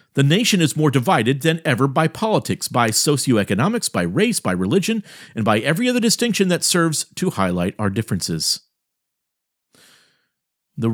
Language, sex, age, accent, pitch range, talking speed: English, male, 50-69, American, 125-180 Hz, 150 wpm